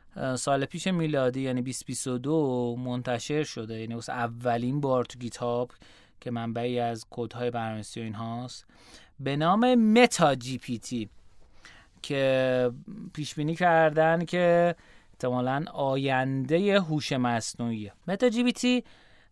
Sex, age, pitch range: male, 30-49, 125-155 Hz